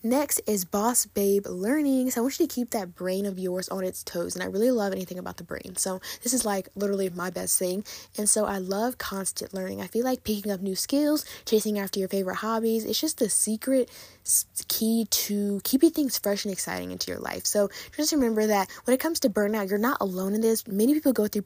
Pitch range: 190-240 Hz